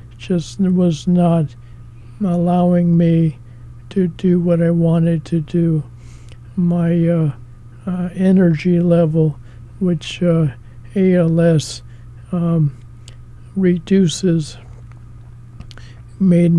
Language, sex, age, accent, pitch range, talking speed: English, male, 50-69, American, 120-170 Hz, 85 wpm